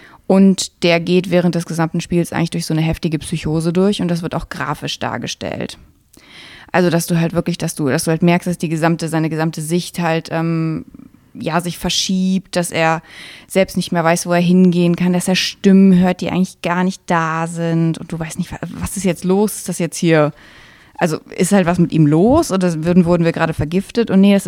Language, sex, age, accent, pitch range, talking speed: German, female, 20-39, German, 160-185 Hz, 220 wpm